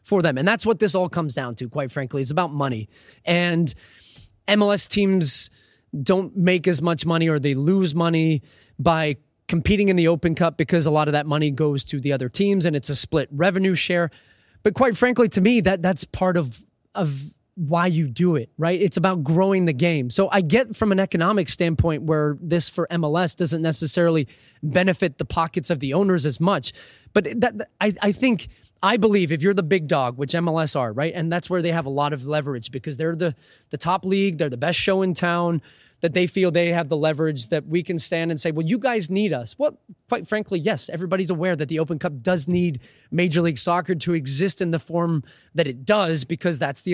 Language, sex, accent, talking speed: English, male, American, 220 wpm